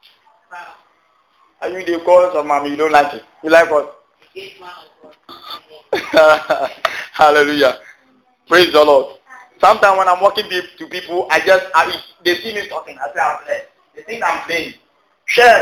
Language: English